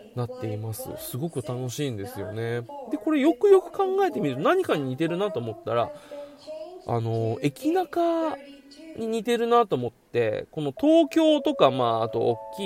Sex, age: male, 20-39